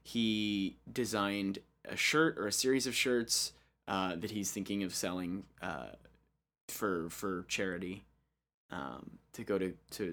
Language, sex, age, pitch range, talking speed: English, male, 20-39, 95-120 Hz, 140 wpm